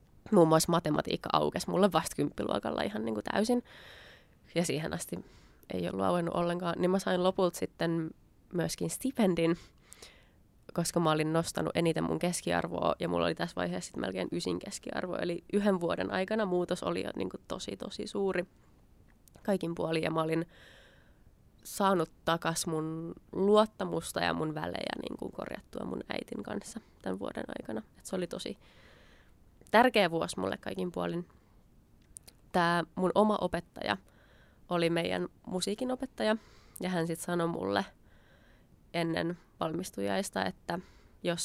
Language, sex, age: Finnish, female, 20-39